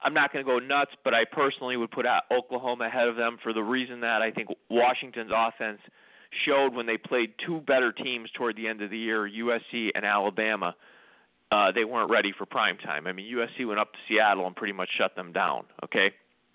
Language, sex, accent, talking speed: English, male, American, 220 wpm